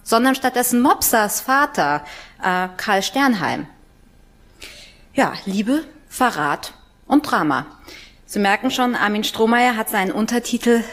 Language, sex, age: German, female, 30-49